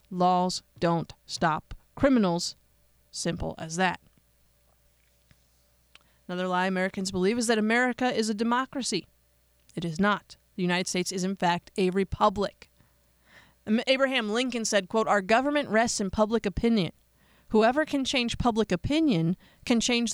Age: 30-49